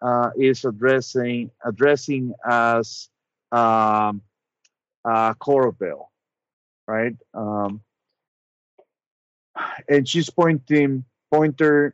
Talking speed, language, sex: 75 wpm, English, male